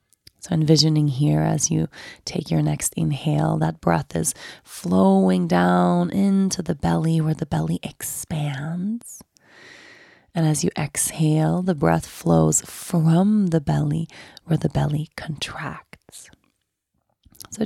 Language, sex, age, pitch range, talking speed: English, female, 20-39, 140-165 Hz, 120 wpm